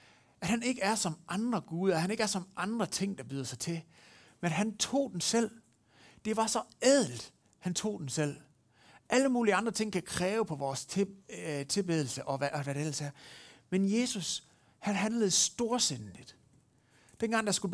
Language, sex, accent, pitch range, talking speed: Danish, male, native, 135-210 Hz, 195 wpm